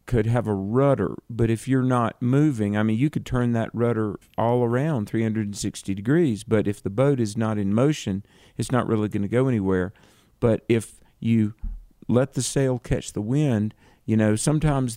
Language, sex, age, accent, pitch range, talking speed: English, male, 50-69, American, 105-130 Hz, 190 wpm